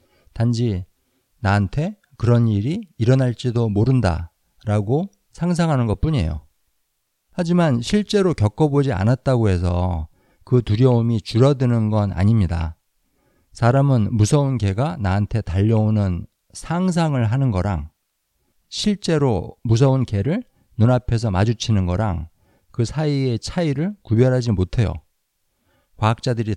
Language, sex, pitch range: Korean, male, 95-135 Hz